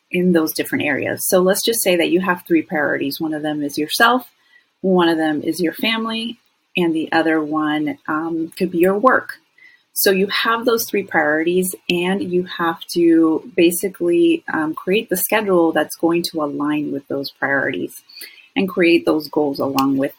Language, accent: English, American